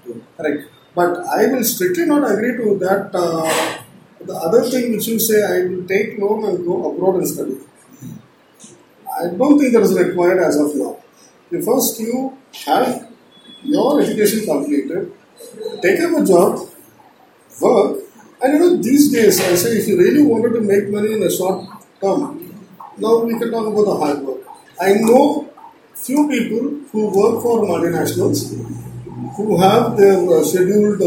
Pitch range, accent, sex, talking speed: 175-230 Hz, Indian, male, 160 wpm